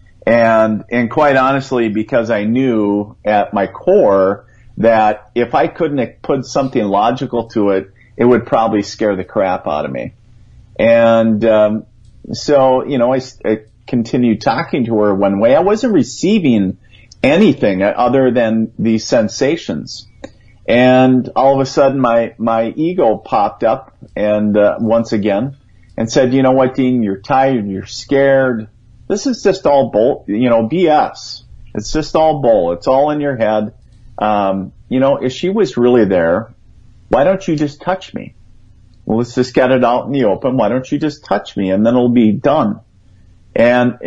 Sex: male